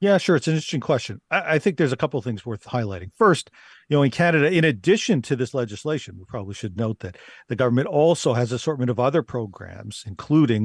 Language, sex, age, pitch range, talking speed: English, male, 40-59, 110-145 Hz, 230 wpm